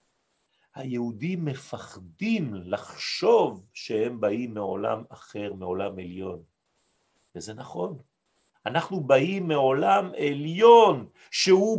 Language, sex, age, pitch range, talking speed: French, male, 50-69, 155-230 Hz, 80 wpm